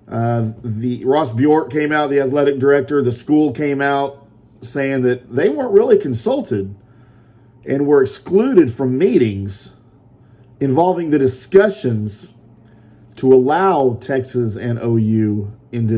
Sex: male